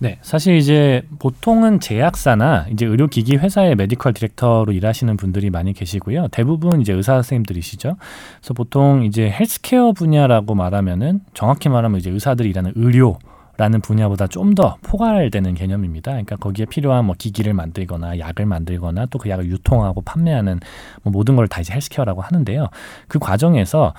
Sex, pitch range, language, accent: male, 95-145 Hz, Korean, native